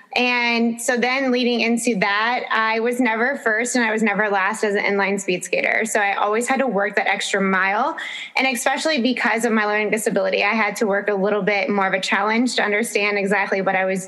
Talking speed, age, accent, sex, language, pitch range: 225 wpm, 20-39, American, female, English, 205-240 Hz